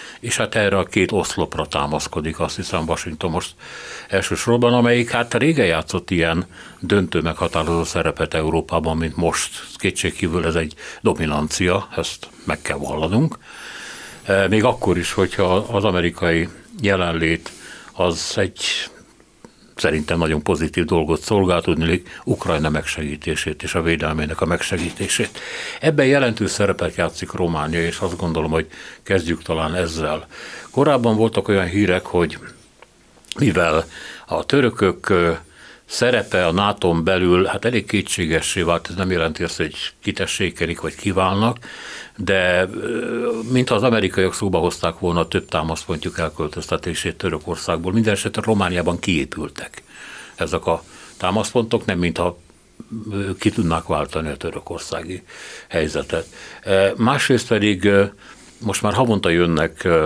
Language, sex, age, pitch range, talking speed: Hungarian, male, 60-79, 80-100 Hz, 120 wpm